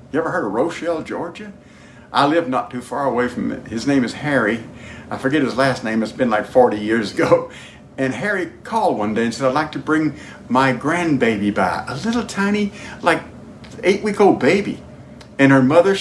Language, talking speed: English, 195 wpm